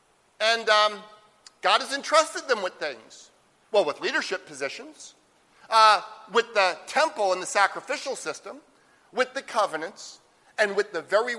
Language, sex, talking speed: English, male, 140 wpm